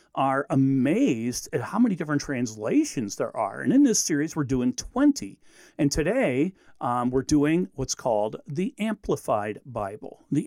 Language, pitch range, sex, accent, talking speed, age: English, 135-205 Hz, male, American, 155 wpm, 50-69